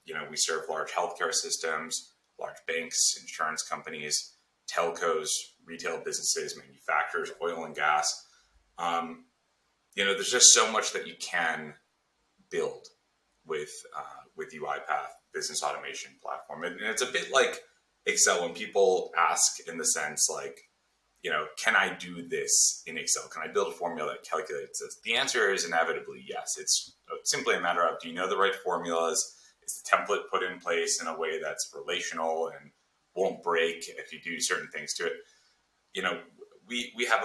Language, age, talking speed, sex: English, 30-49, 170 wpm, male